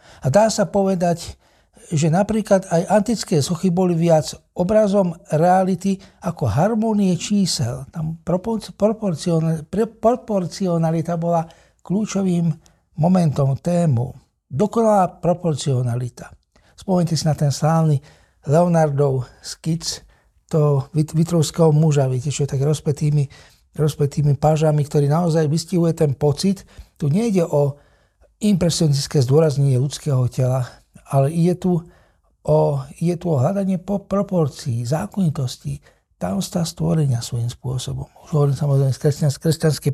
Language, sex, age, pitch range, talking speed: Slovak, male, 60-79, 145-180 Hz, 105 wpm